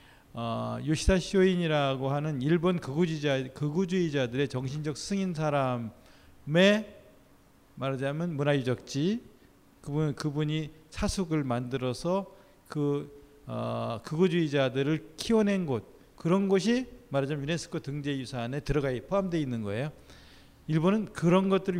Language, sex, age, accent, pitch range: Korean, male, 40-59, native, 130-175 Hz